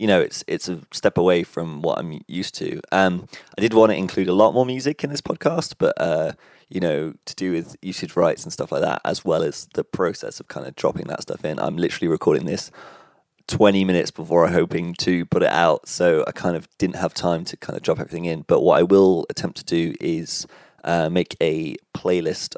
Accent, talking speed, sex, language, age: British, 235 wpm, male, English, 30-49